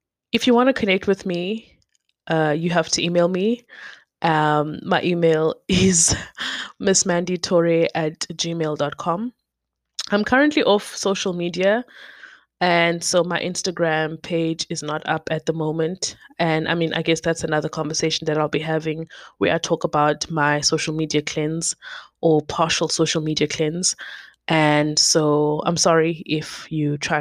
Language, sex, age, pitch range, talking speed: English, female, 20-39, 155-175 Hz, 150 wpm